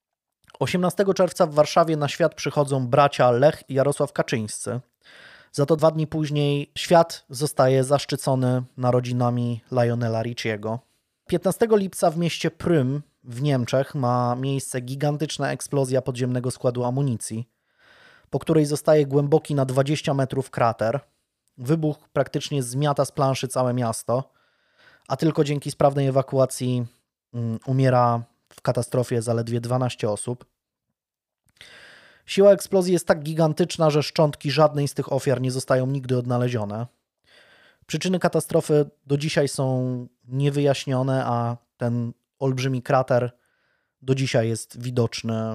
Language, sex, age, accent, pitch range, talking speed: Polish, male, 20-39, native, 120-150 Hz, 120 wpm